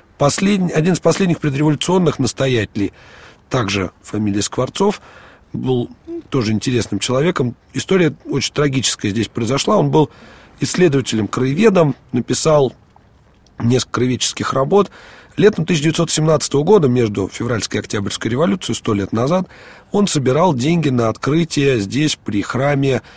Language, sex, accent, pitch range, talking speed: Russian, male, native, 115-150 Hz, 110 wpm